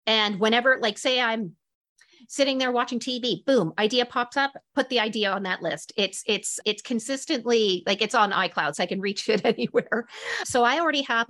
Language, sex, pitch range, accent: English, female, 200-260 Hz, American